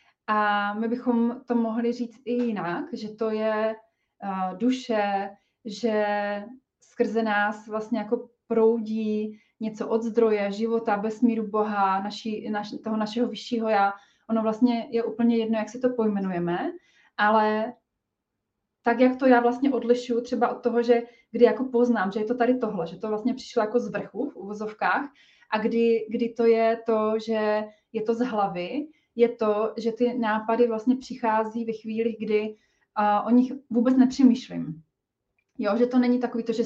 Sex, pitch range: female, 215-240 Hz